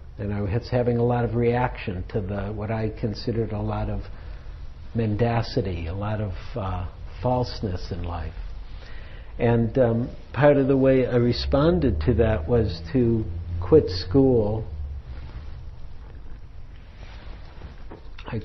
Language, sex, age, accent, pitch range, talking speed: English, male, 60-79, American, 85-120 Hz, 125 wpm